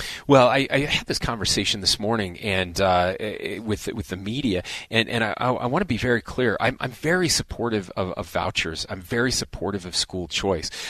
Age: 30-49